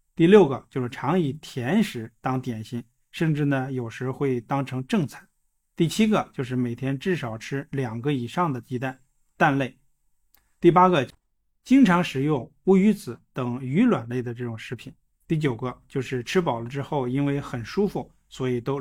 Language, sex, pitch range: Chinese, male, 125-150 Hz